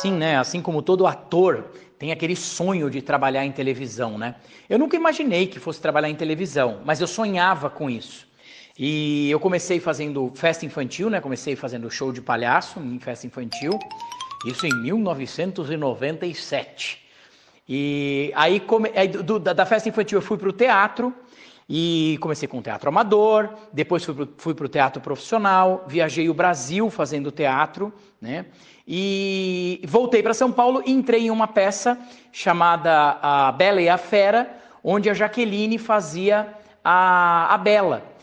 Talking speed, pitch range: 155 wpm, 155-220 Hz